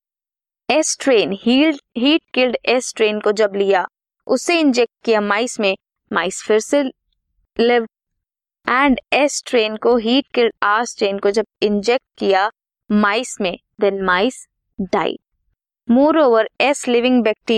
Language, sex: Hindi, female